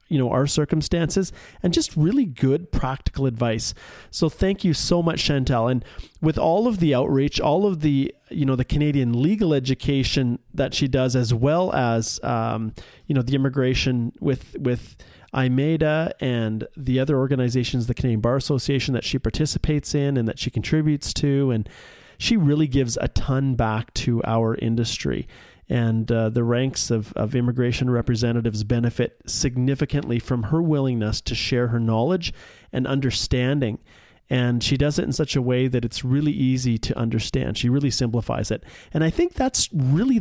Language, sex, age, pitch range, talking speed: English, male, 30-49, 120-145 Hz, 170 wpm